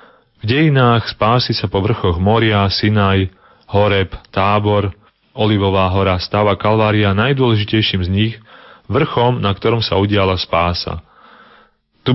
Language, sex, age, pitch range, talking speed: Slovak, male, 30-49, 95-115 Hz, 120 wpm